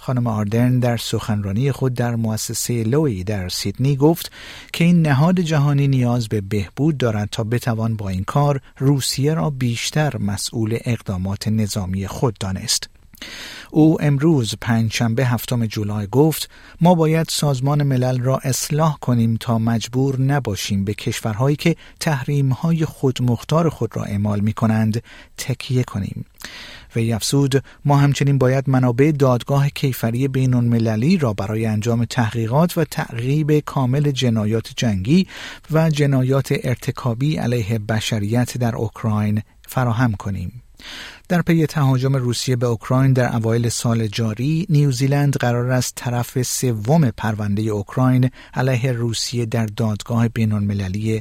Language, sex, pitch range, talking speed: Persian, male, 110-140 Hz, 130 wpm